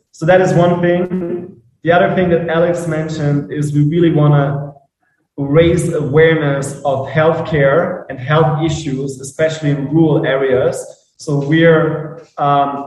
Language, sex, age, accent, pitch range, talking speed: English, male, 20-39, German, 145-160 Hz, 140 wpm